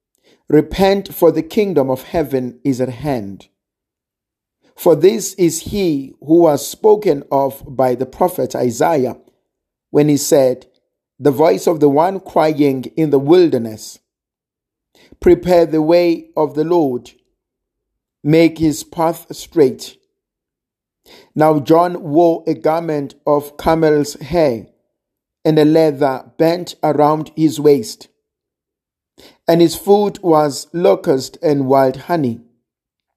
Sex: male